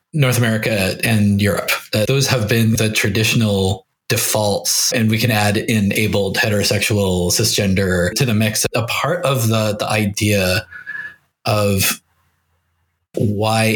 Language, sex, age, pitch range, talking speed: English, male, 20-39, 105-125 Hz, 125 wpm